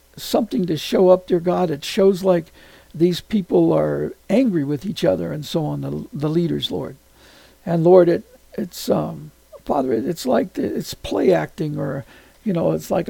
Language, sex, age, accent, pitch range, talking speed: English, male, 60-79, American, 165-195 Hz, 190 wpm